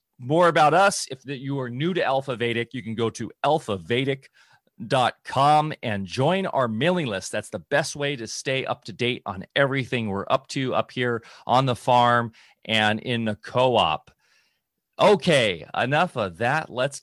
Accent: American